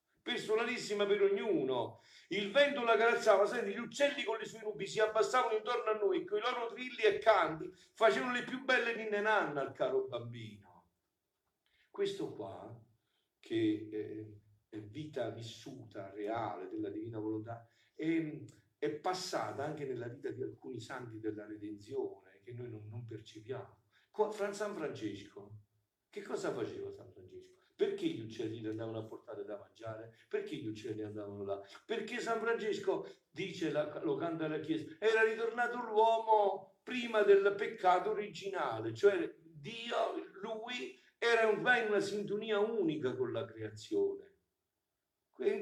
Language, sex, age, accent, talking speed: Italian, male, 50-69, native, 140 wpm